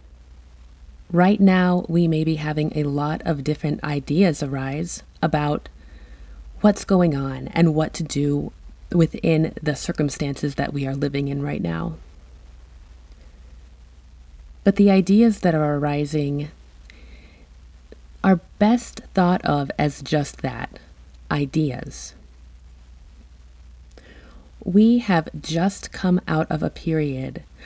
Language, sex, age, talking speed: English, female, 30-49, 115 wpm